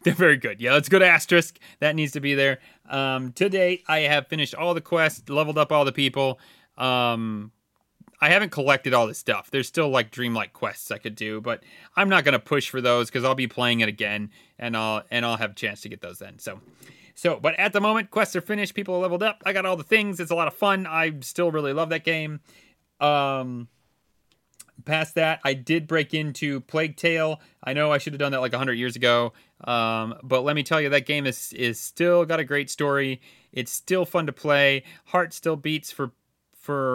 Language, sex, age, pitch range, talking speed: English, male, 30-49, 125-160 Hz, 225 wpm